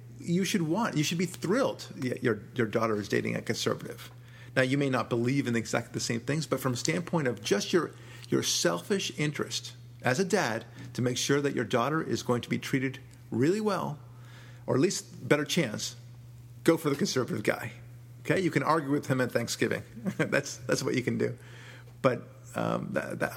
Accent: American